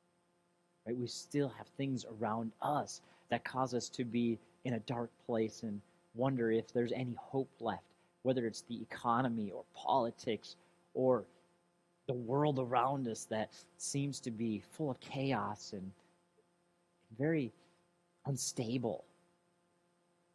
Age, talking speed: 40-59, 125 wpm